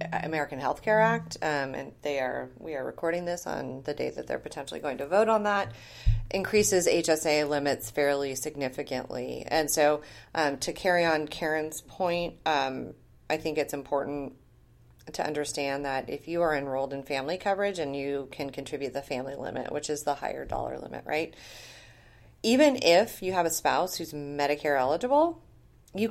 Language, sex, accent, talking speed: English, female, American, 170 wpm